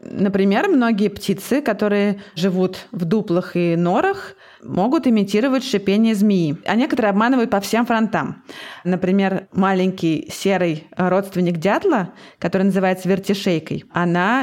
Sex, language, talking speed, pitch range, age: female, Russian, 115 wpm, 175-200 Hz, 20-39